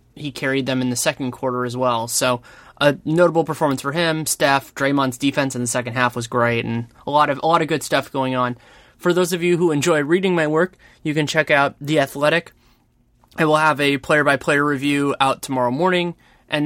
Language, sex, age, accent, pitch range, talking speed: English, male, 20-39, American, 125-150 Hz, 215 wpm